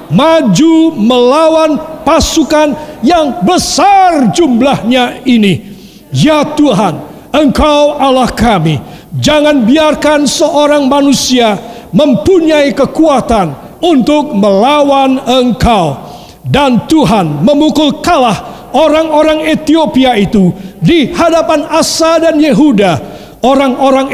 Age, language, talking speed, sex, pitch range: 50-69, Indonesian, 85 wpm, male, 230-305 Hz